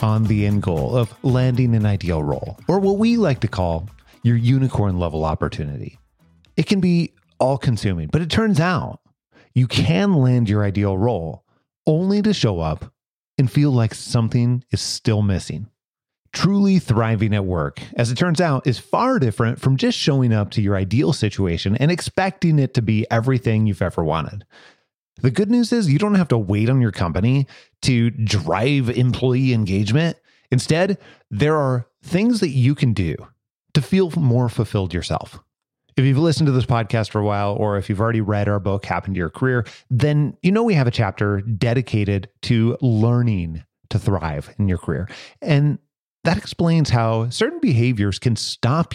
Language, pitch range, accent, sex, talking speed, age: English, 105-140 Hz, American, male, 175 wpm, 30-49